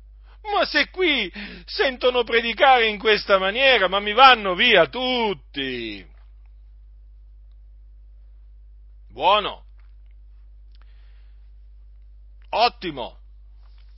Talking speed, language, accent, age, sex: 65 wpm, Italian, native, 50-69, male